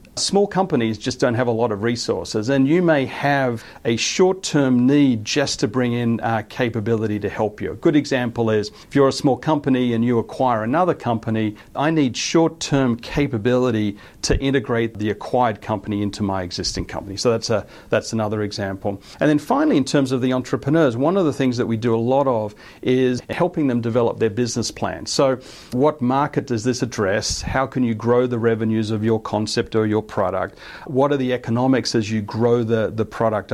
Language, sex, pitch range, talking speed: English, male, 110-135 Hz, 200 wpm